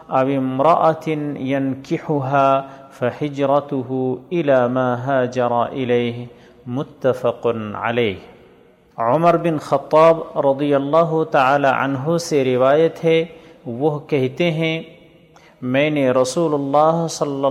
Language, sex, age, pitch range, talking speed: Urdu, male, 40-59, 130-165 Hz, 80 wpm